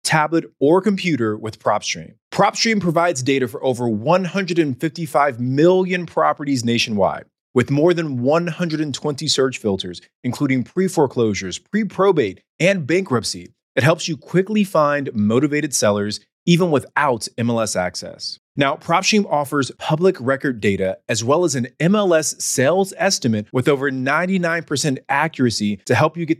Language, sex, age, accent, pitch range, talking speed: English, male, 30-49, American, 120-175 Hz, 130 wpm